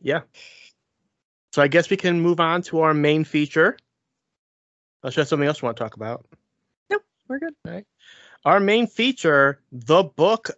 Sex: male